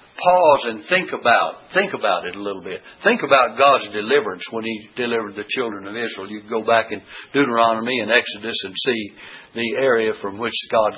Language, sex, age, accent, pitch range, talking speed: English, male, 60-79, American, 115-165 Hz, 195 wpm